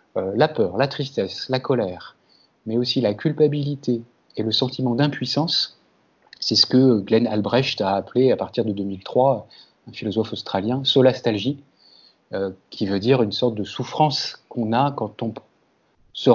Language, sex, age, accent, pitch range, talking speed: French, male, 30-49, French, 110-130 Hz, 170 wpm